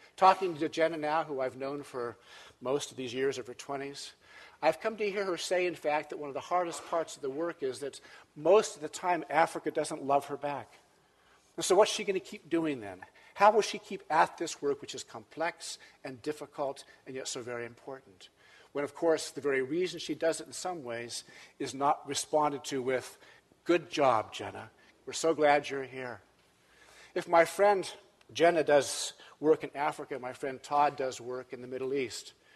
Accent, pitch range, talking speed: American, 135-190 Hz, 205 wpm